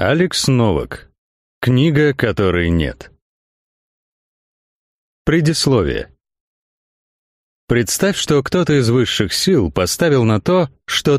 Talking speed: 85 wpm